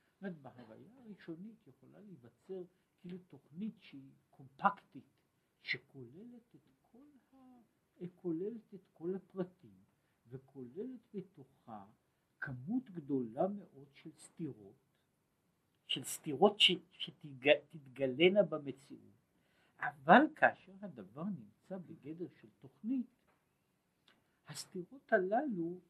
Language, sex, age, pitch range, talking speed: Hebrew, male, 60-79, 140-195 Hz, 80 wpm